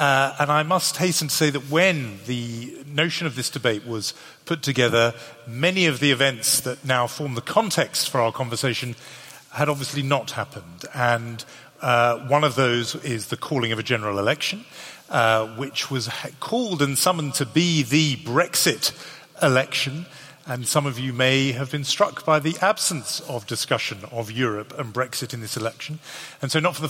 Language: English